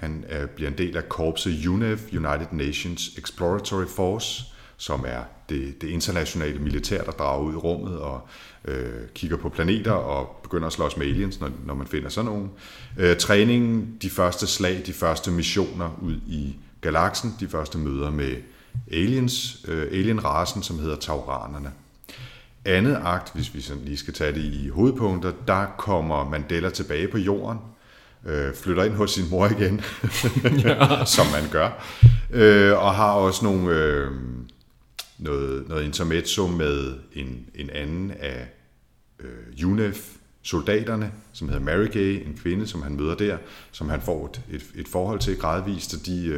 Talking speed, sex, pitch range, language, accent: 155 wpm, male, 75-105 Hz, Danish, native